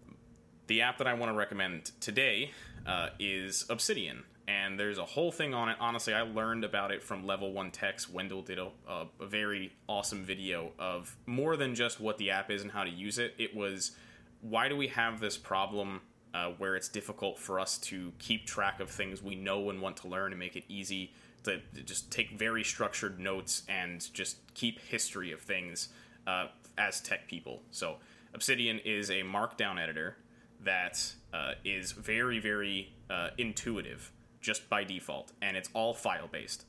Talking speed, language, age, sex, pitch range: 185 wpm, English, 20-39, male, 95-115 Hz